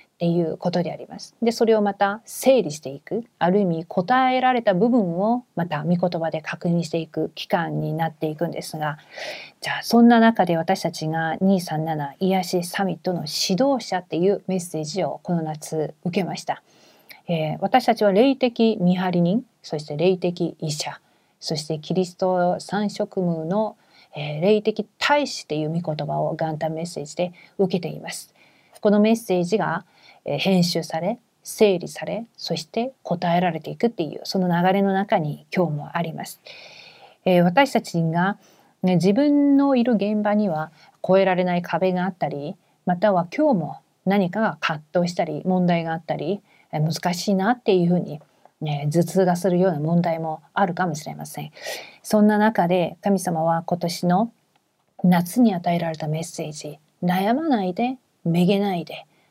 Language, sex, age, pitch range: Korean, female, 40-59, 165-205 Hz